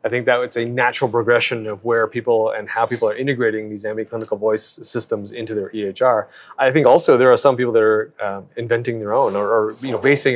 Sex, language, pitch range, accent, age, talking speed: male, English, 110-145 Hz, American, 30-49, 230 wpm